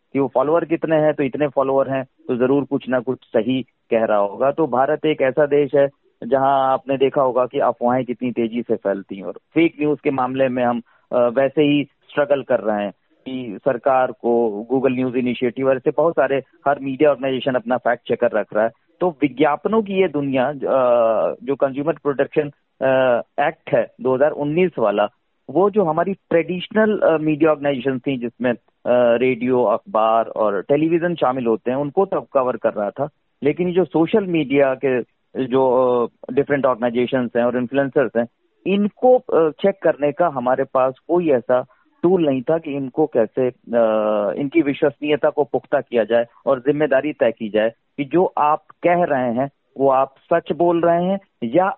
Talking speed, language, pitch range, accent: 175 wpm, Hindi, 125-155 Hz, native